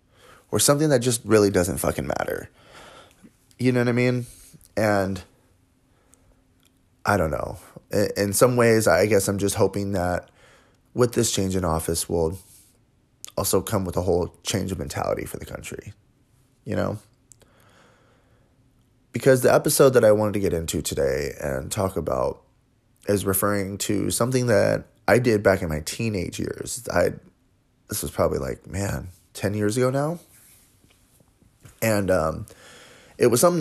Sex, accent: male, American